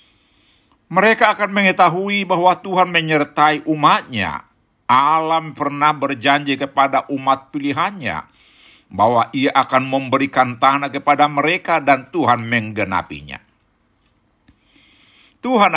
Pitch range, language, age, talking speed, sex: 135-160 Hz, Indonesian, 50-69, 90 wpm, male